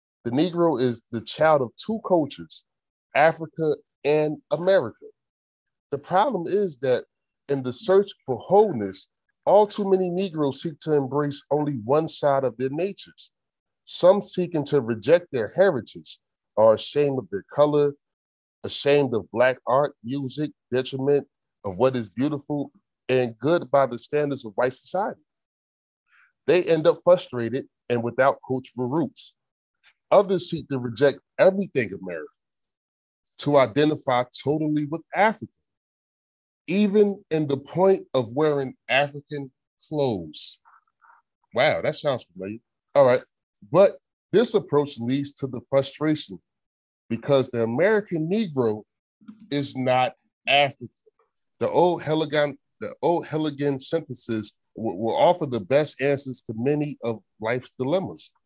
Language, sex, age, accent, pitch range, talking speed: English, male, 30-49, American, 125-165 Hz, 125 wpm